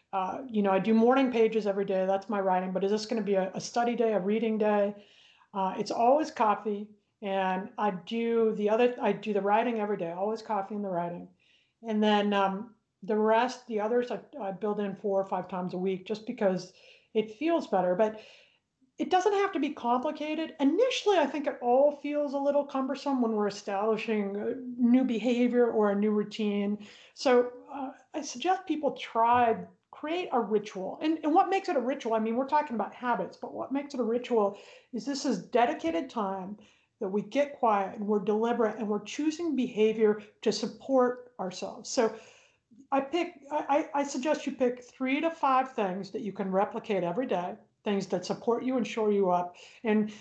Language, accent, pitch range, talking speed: English, American, 205-270 Hz, 200 wpm